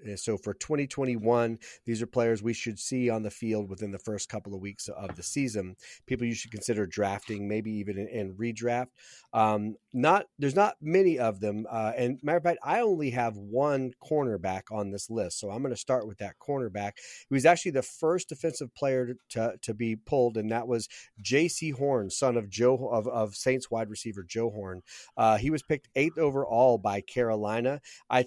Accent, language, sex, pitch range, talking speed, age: American, English, male, 110-135 Hz, 200 wpm, 30-49